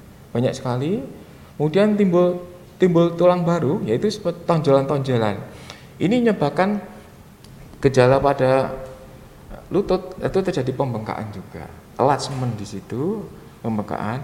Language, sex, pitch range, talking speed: Indonesian, male, 120-170 Hz, 95 wpm